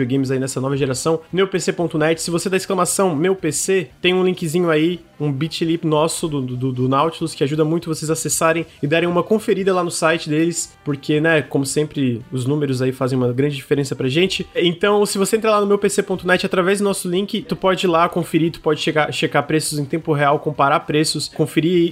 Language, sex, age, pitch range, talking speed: Portuguese, male, 20-39, 150-185 Hz, 215 wpm